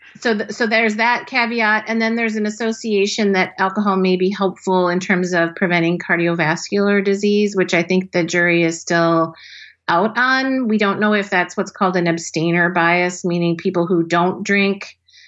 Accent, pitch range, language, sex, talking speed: American, 165-200 Hz, English, female, 175 wpm